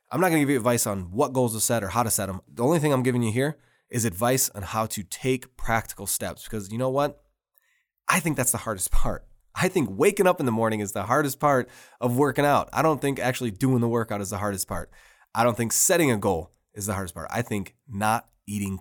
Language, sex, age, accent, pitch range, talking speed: English, male, 20-39, American, 100-130 Hz, 260 wpm